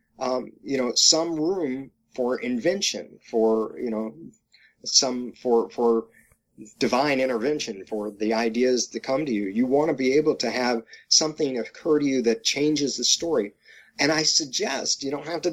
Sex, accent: male, American